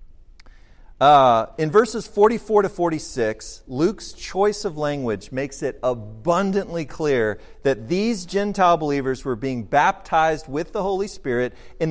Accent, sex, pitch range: American, male, 135-205 Hz